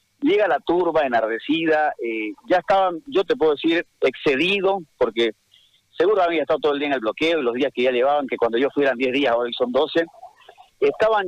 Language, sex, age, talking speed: Spanish, male, 50-69, 200 wpm